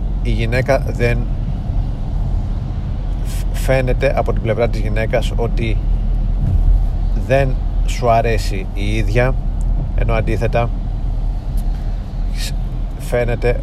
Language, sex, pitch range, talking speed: Greek, male, 105-120 Hz, 80 wpm